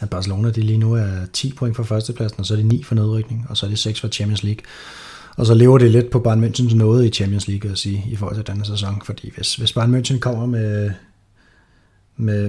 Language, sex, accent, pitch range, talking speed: Danish, male, native, 105-125 Hz, 250 wpm